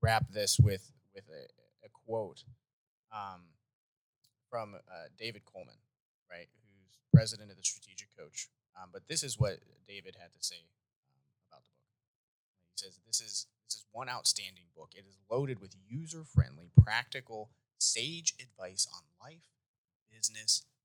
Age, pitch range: 30-49, 95-125 Hz